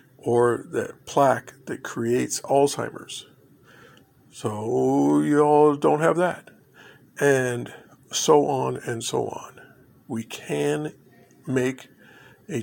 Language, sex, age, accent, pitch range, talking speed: English, male, 50-69, American, 115-140 Hz, 105 wpm